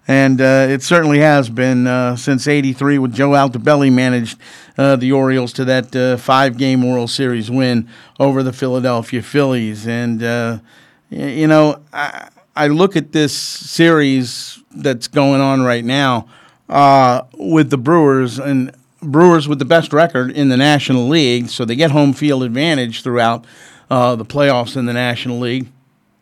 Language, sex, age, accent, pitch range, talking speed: English, male, 50-69, American, 125-150 Hz, 160 wpm